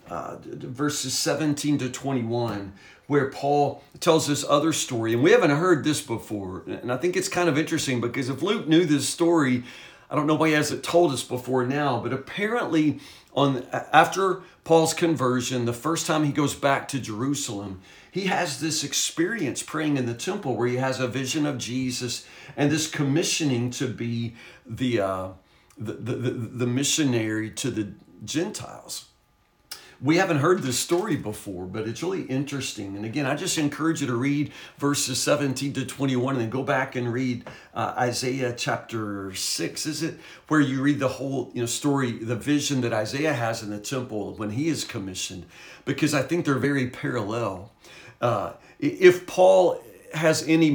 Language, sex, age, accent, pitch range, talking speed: English, male, 50-69, American, 120-150 Hz, 175 wpm